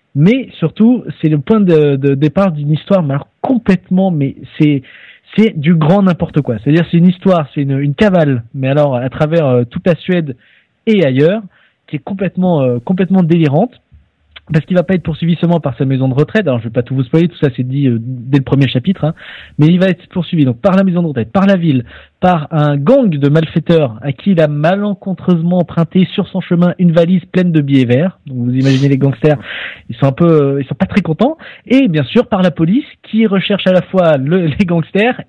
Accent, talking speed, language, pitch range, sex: French, 235 wpm, French, 140-180 Hz, male